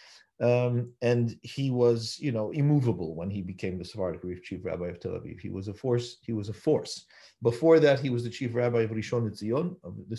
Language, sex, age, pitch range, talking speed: English, male, 40-59, 115-155 Hz, 230 wpm